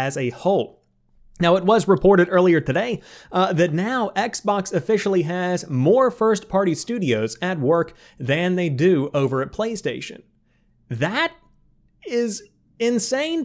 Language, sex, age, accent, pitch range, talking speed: English, male, 30-49, American, 150-205 Hz, 130 wpm